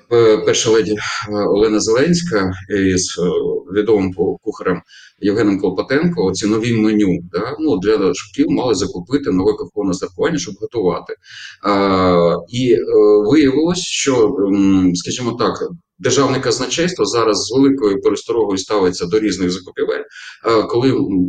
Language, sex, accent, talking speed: Ukrainian, male, native, 110 wpm